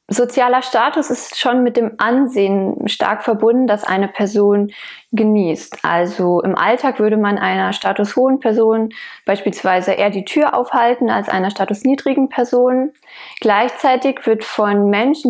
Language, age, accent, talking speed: German, 20-39, German, 135 wpm